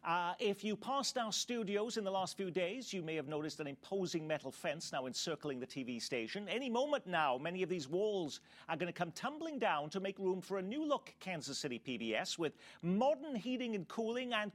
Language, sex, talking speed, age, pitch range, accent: English, male, 220 wpm, 40-59, 155-220 Hz, British